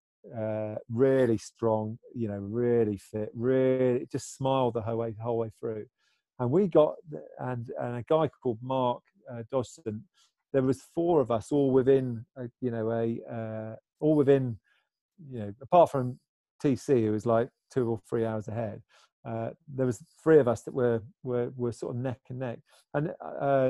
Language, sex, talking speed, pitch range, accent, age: English, male, 180 wpm, 115-145 Hz, British, 40-59